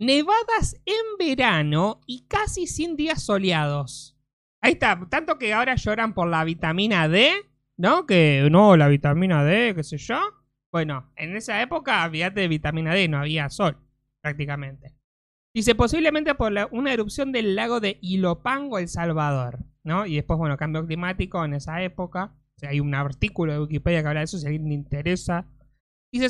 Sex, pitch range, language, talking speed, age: male, 160-245 Hz, Spanish, 175 wpm, 20-39